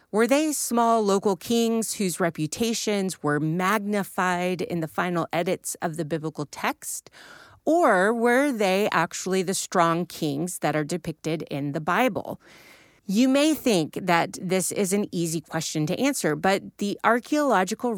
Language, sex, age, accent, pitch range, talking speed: English, female, 30-49, American, 165-230 Hz, 145 wpm